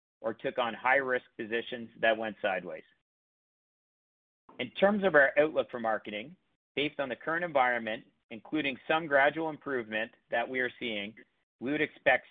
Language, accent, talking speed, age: English, American, 150 wpm, 50-69